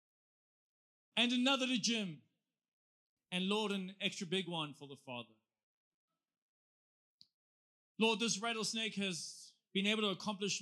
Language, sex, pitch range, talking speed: English, male, 145-195 Hz, 120 wpm